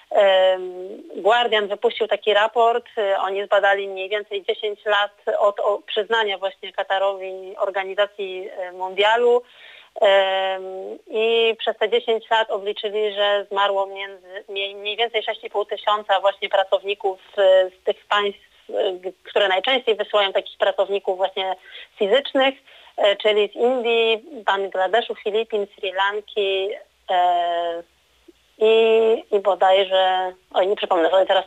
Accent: native